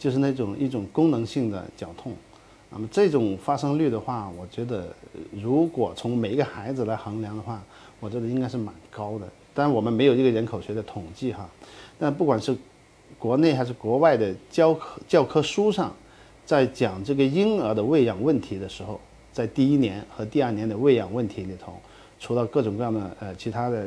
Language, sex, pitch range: Chinese, male, 110-140 Hz